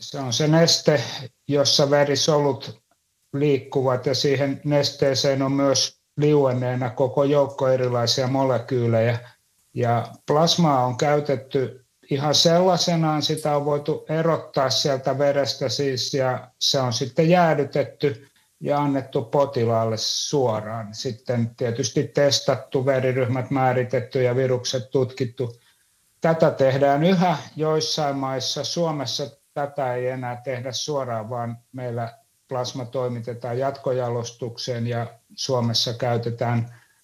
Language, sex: Finnish, male